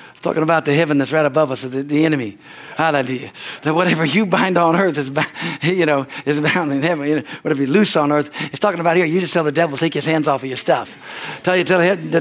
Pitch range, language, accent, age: 160-220 Hz, English, American, 60-79